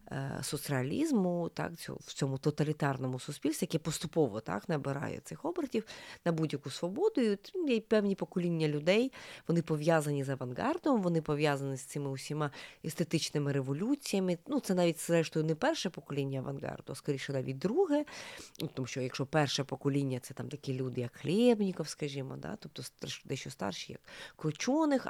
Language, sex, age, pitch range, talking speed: Ukrainian, female, 30-49, 145-220 Hz, 145 wpm